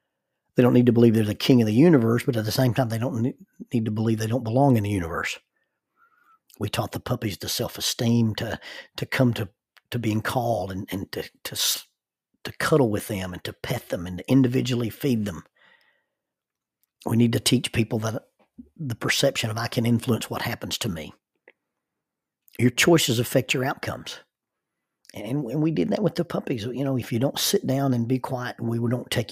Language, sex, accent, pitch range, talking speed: English, male, American, 110-135 Hz, 205 wpm